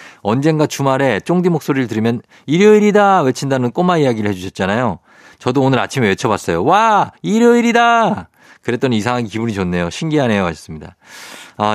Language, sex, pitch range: Korean, male, 95-145 Hz